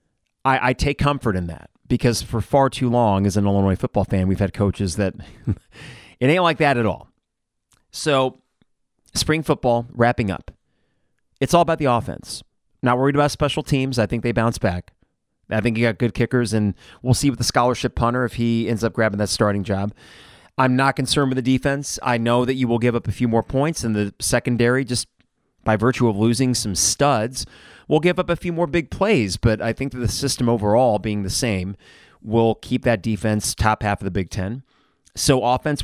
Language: English